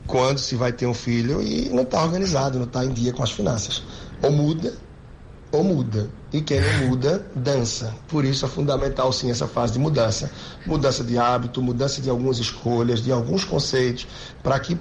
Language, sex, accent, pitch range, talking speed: Portuguese, male, Brazilian, 120-140 Hz, 190 wpm